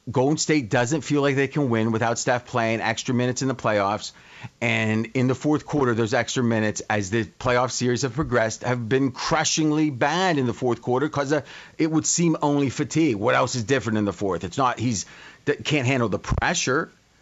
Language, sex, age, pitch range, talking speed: English, male, 40-59, 120-145 Hz, 200 wpm